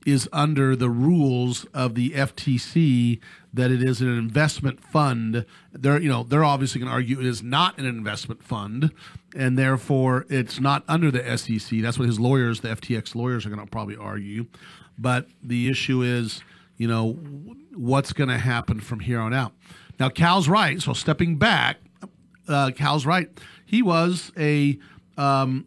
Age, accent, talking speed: 40-59, American, 170 wpm